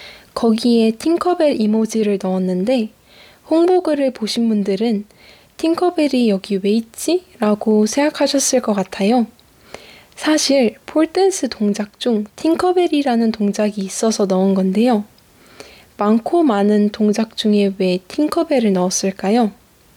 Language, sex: Korean, female